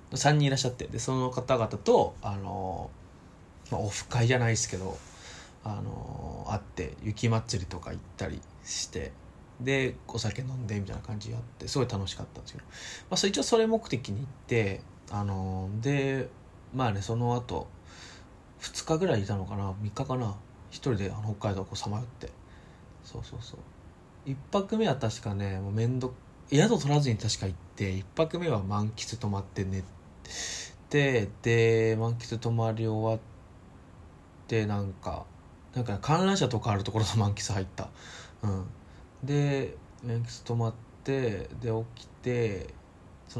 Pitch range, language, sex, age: 95-120 Hz, Japanese, male, 20-39